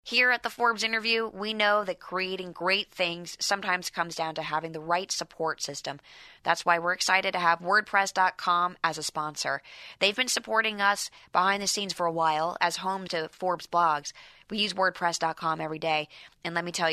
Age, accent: 20-39, American